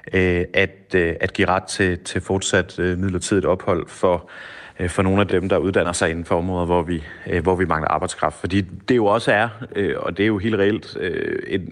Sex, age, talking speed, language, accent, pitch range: male, 30-49, 190 wpm, Danish, native, 90-105 Hz